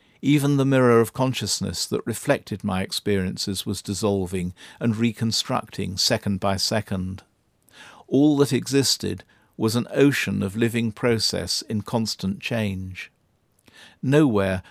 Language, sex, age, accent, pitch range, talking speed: English, male, 50-69, British, 100-125 Hz, 120 wpm